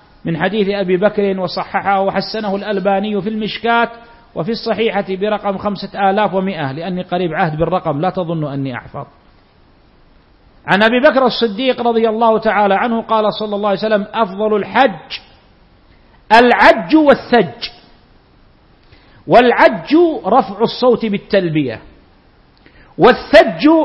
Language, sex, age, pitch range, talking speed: Arabic, male, 50-69, 190-255 Hz, 115 wpm